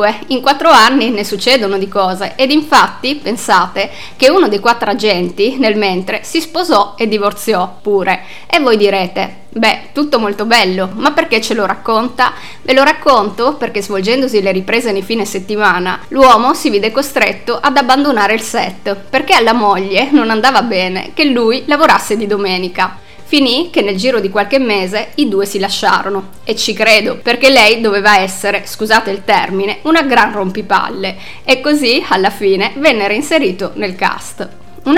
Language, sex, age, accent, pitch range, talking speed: Italian, female, 20-39, native, 200-265 Hz, 165 wpm